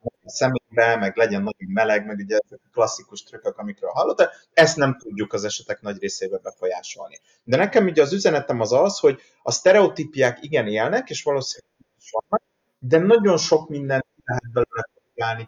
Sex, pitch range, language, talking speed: male, 120-195 Hz, Hungarian, 165 wpm